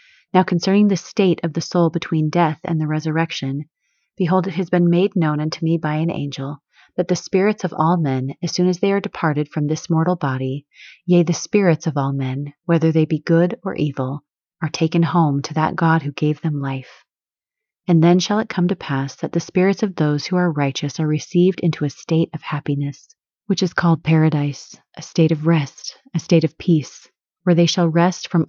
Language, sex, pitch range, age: English, female, 150-180 Hz, 30-49